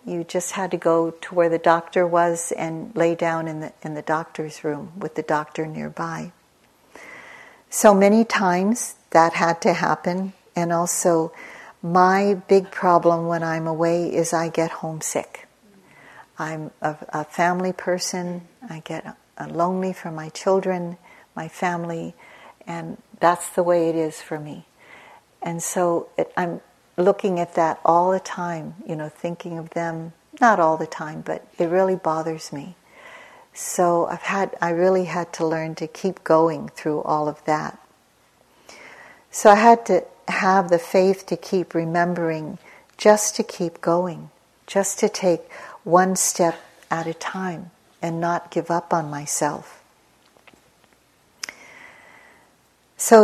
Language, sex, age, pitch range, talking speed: English, female, 60-79, 165-190 Hz, 150 wpm